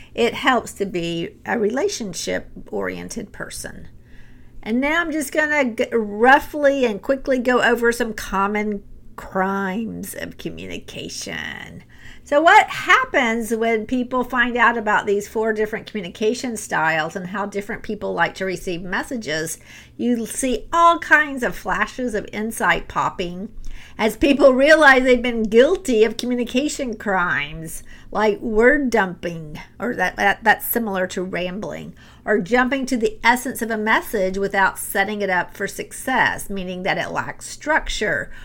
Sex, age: female, 50-69